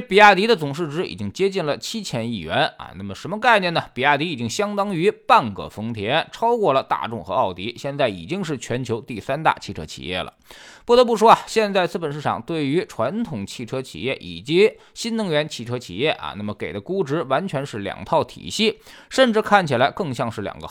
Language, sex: Chinese, male